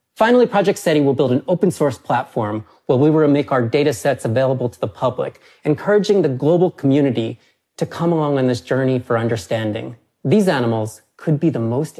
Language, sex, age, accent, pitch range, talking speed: English, male, 30-49, American, 120-155 Hz, 180 wpm